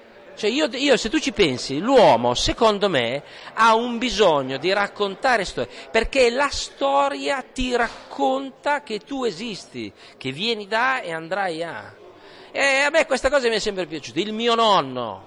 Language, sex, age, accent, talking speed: Italian, male, 40-59, native, 165 wpm